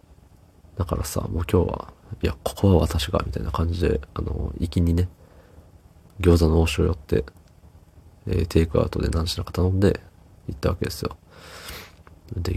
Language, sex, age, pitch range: Japanese, male, 40-59, 80-95 Hz